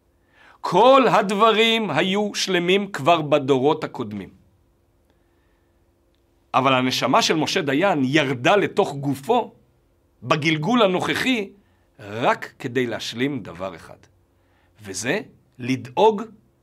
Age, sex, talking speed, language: 50-69, male, 85 wpm, Hebrew